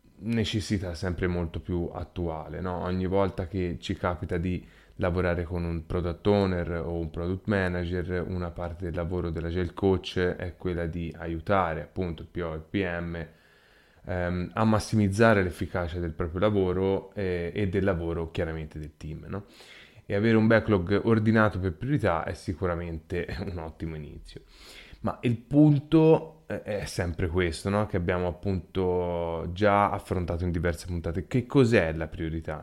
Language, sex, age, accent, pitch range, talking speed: Italian, male, 20-39, native, 85-100 Hz, 150 wpm